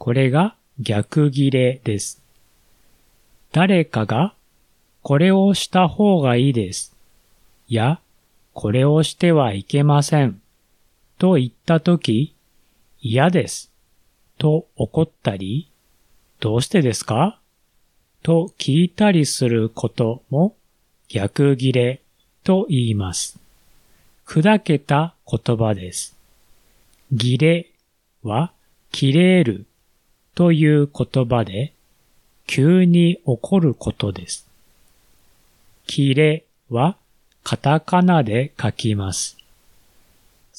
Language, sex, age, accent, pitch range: Japanese, male, 40-59, native, 110-160 Hz